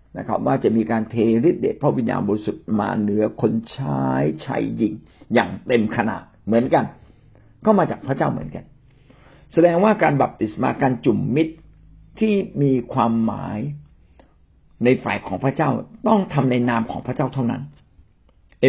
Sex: male